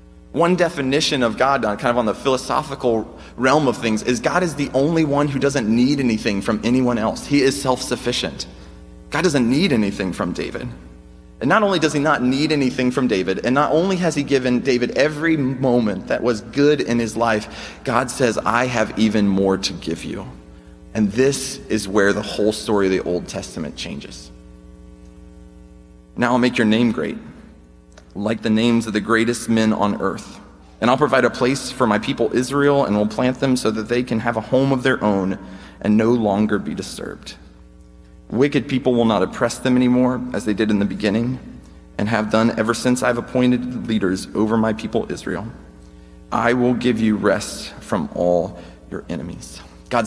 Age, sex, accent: 30-49, male, American